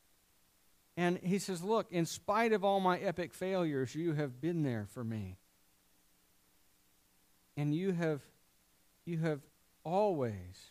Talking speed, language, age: 125 wpm, English, 50-69